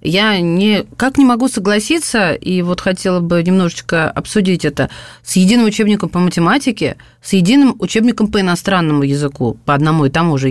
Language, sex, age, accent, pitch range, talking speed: Russian, female, 30-49, native, 175-235 Hz, 160 wpm